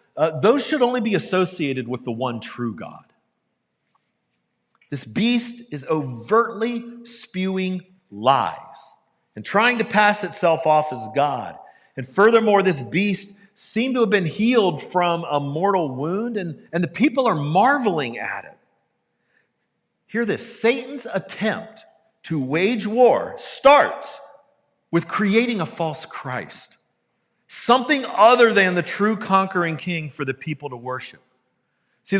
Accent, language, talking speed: American, English, 135 wpm